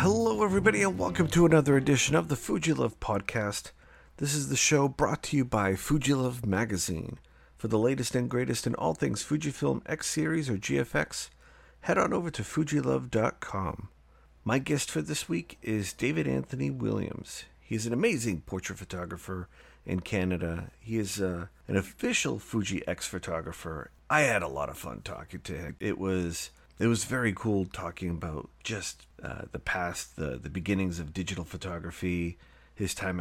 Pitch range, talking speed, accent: 80-115 Hz, 165 wpm, American